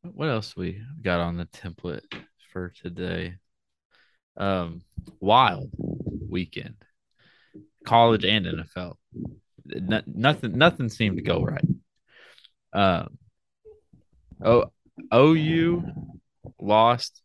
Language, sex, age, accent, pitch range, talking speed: English, male, 20-39, American, 90-115 Hz, 85 wpm